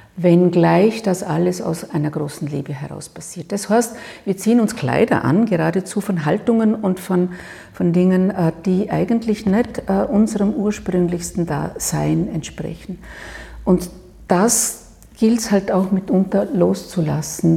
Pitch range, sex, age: 170-225 Hz, female, 50-69